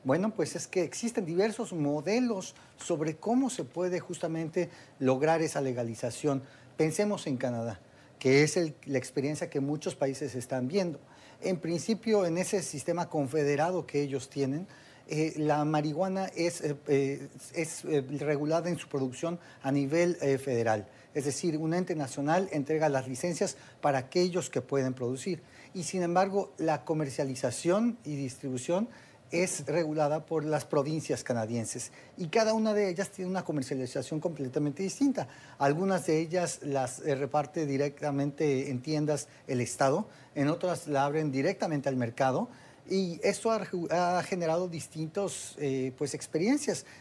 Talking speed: 145 wpm